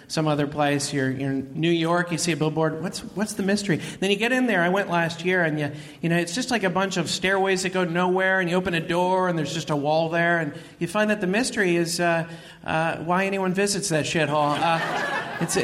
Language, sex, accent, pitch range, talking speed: English, male, American, 160-195 Hz, 255 wpm